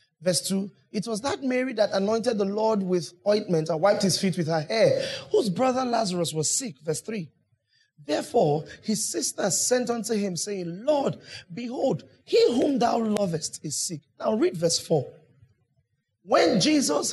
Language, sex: English, male